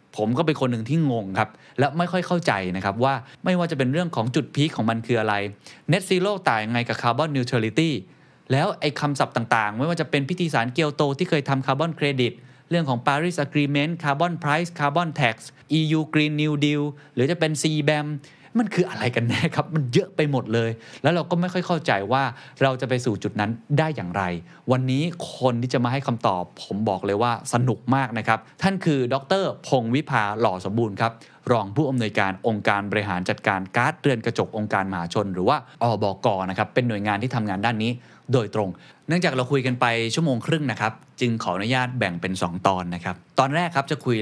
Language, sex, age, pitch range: Thai, male, 20-39, 110-150 Hz